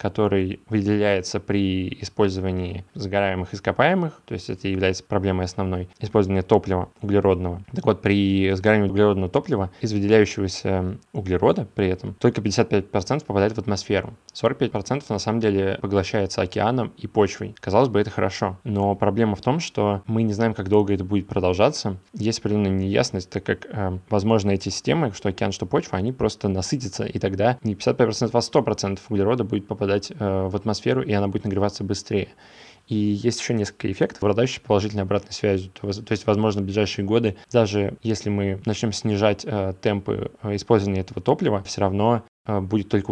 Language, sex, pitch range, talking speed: Russian, male, 100-110 Hz, 165 wpm